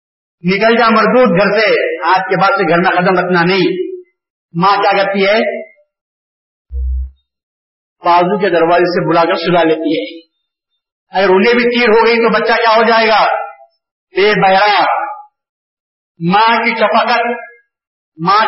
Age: 50-69